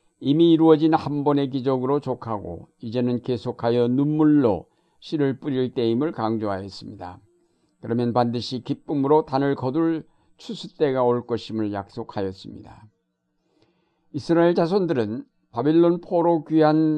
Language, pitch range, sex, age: Korean, 115-150 Hz, male, 60-79